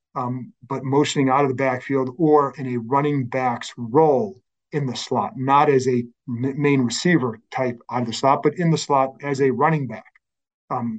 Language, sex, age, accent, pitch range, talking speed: English, male, 40-59, American, 120-145 Hz, 190 wpm